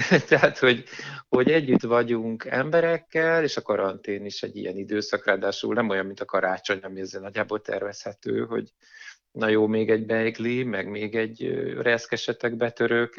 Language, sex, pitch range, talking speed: Hungarian, male, 100-120 Hz, 155 wpm